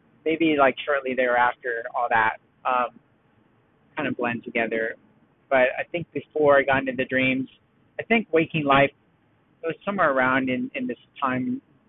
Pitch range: 130-165 Hz